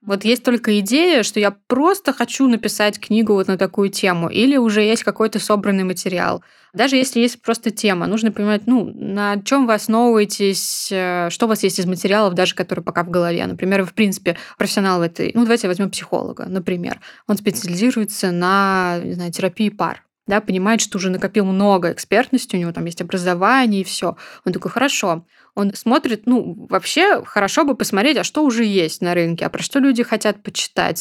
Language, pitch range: Russian, 185-225 Hz